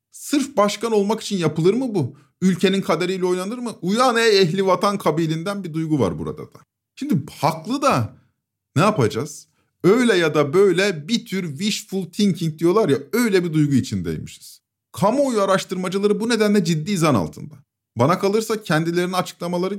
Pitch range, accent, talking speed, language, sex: 145-205 Hz, native, 155 wpm, Turkish, male